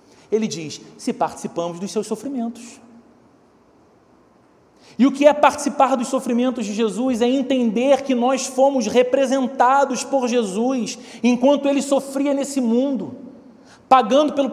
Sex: male